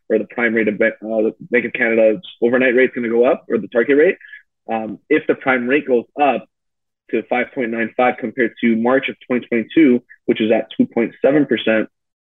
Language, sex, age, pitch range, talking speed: English, male, 20-39, 110-130 Hz, 160 wpm